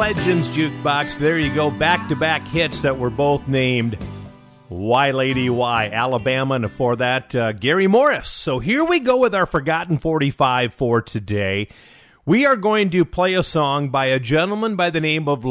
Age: 50-69